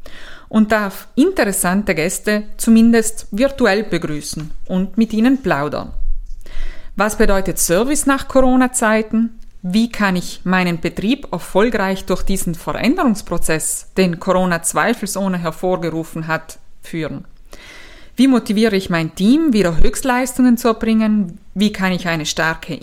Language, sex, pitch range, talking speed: German, female, 180-230 Hz, 120 wpm